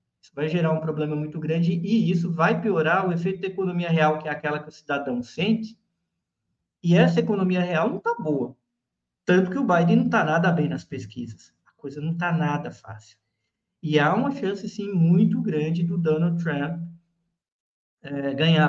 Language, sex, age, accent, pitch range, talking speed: Portuguese, male, 50-69, Brazilian, 155-180 Hz, 185 wpm